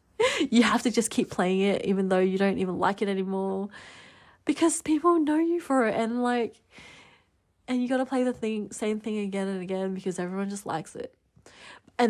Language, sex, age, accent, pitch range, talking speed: English, female, 20-39, Australian, 190-230 Hz, 205 wpm